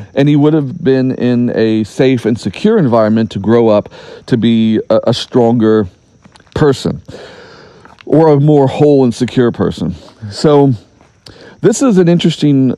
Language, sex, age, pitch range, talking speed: English, male, 40-59, 110-160 Hz, 145 wpm